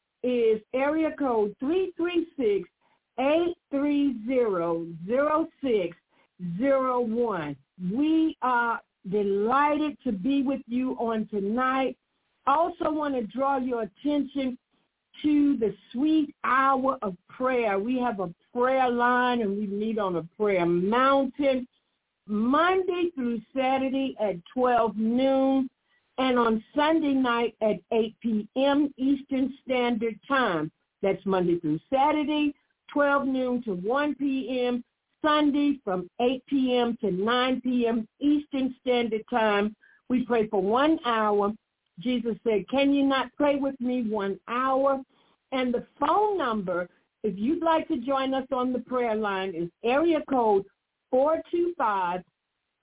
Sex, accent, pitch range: female, American, 215-275 Hz